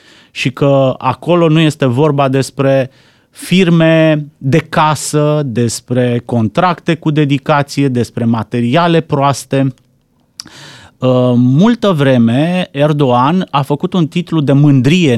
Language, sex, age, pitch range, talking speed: Romanian, male, 30-49, 130-170 Hz, 105 wpm